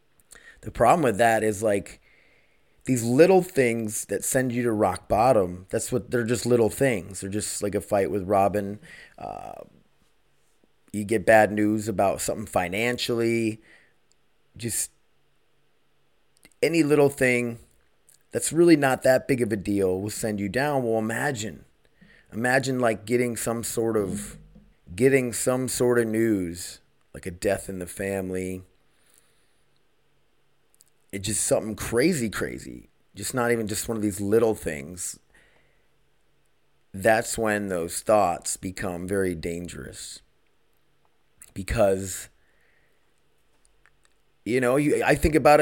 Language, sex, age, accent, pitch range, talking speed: English, male, 30-49, American, 95-120 Hz, 130 wpm